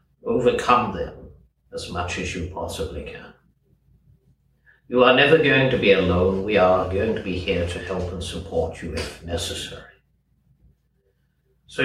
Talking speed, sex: 145 wpm, male